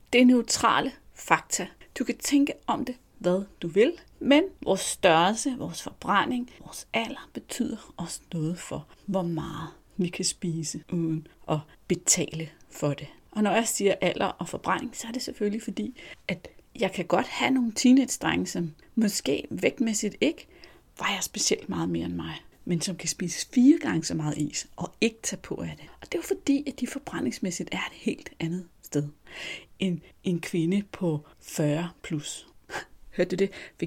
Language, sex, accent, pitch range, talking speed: Danish, female, native, 165-245 Hz, 175 wpm